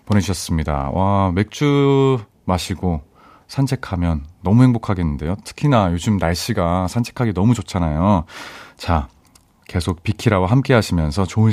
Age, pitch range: 30-49, 85-130 Hz